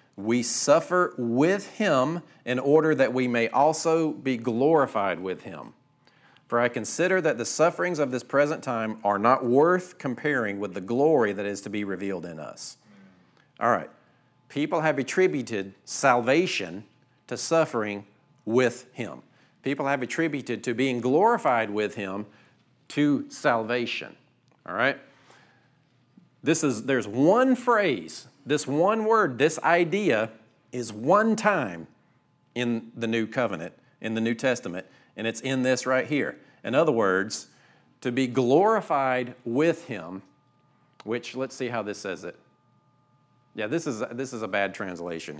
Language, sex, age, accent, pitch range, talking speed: English, male, 40-59, American, 110-145 Hz, 145 wpm